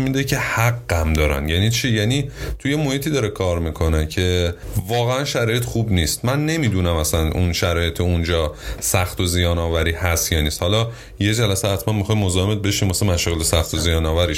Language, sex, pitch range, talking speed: Persian, male, 90-120 Hz, 185 wpm